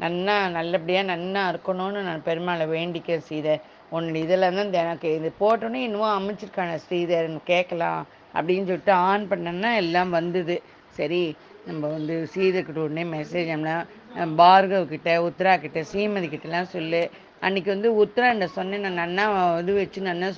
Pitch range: 170-190 Hz